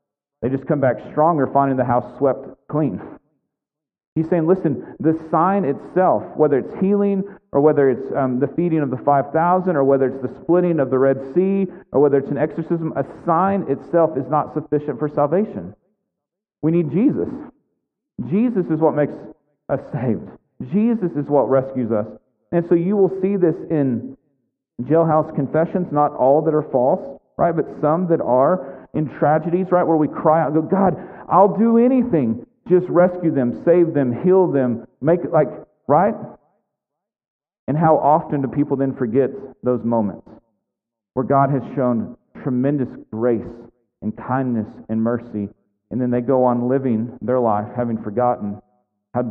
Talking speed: 165 wpm